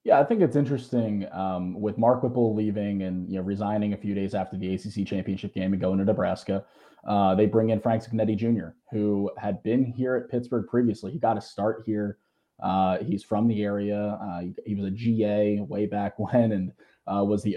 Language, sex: English, male